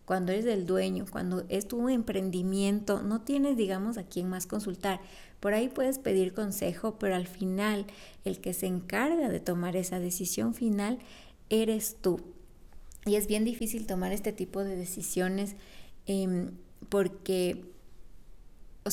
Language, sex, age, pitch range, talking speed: Spanish, female, 20-39, 185-210 Hz, 145 wpm